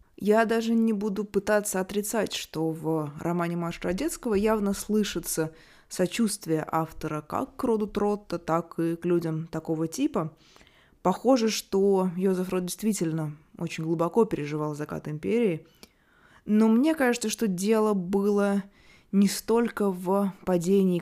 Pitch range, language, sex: 170-210 Hz, Russian, female